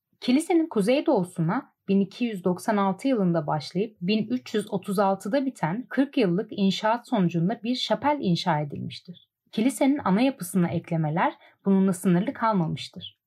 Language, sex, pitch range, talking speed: Turkish, female, 170-230 Hz, 100 wpm